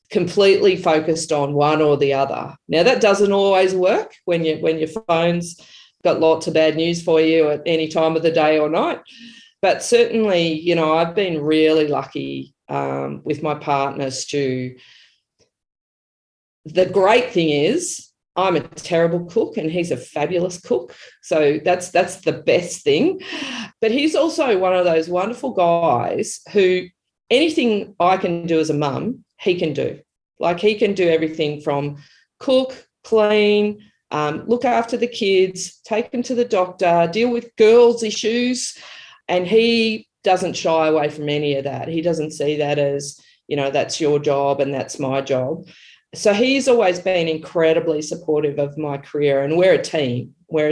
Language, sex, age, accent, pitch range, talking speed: English, female, 40-59, Australian, 150-205 Hz, 170 wpm